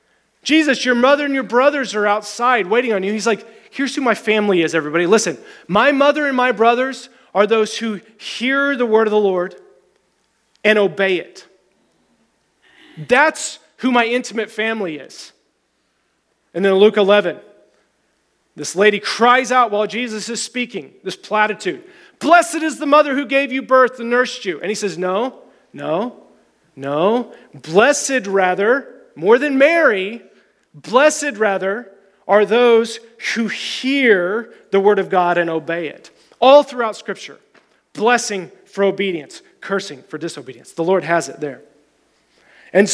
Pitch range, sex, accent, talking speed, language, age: 195-255 Hz, male, American, 150 wpm, English, 30-49